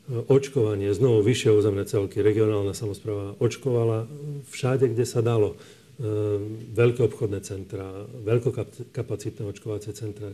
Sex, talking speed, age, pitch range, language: male, 105 wpm, 40-59, 105-115 Hz, Slovak